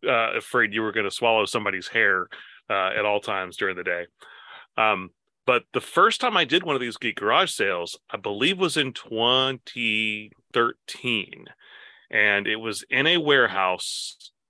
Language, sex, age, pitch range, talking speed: English, male, 30-49, 100-130 Hz, 165 wpm